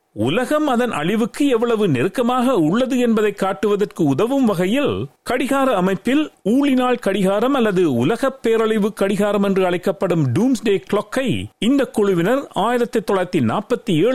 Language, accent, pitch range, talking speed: Tamil, native, 190-250 Hz, 110 wpm